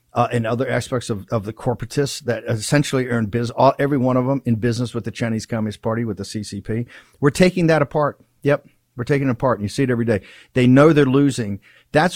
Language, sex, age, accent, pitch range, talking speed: English, male, 50-69, American, 120-145 Hz, 230 wpm